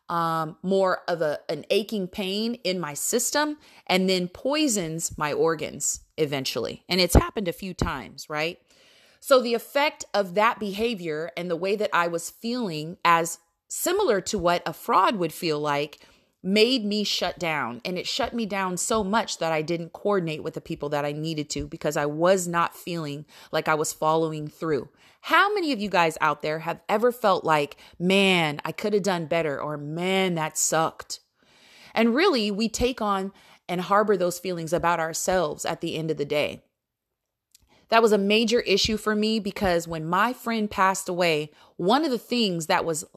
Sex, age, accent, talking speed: female, 30-49, American, 185 wpm